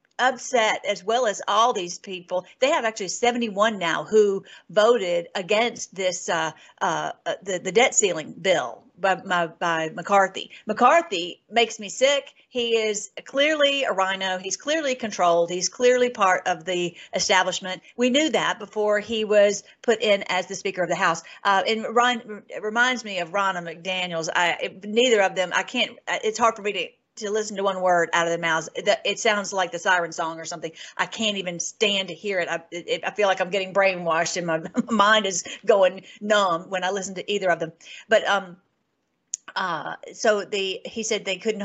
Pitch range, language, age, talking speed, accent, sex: 180-225 Hz, English, 50-69, 195 wpm, American, female